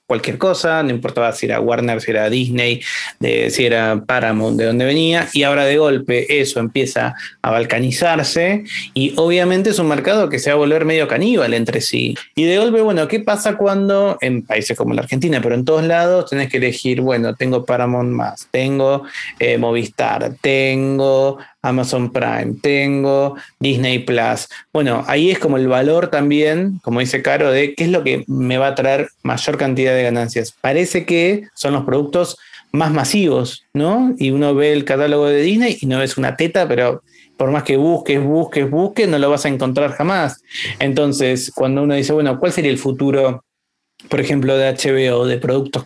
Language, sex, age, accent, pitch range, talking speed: Spanish, male, 30-49, Argentinian, 125-155 Hz, 185 wpm